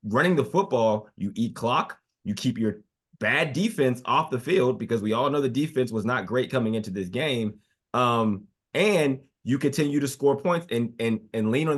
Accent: American